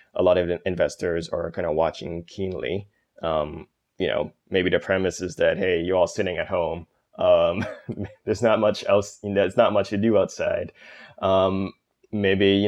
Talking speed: 180 wpm